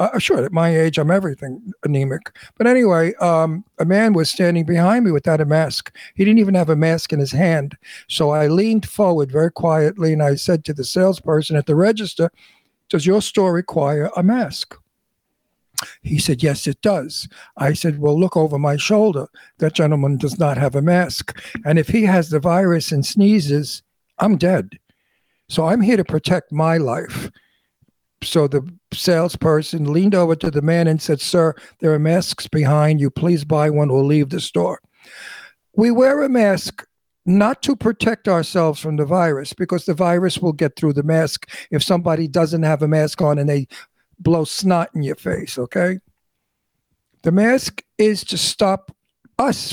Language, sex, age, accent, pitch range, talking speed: English, male, 60-79, American, 150-185 Hz, 180 wpm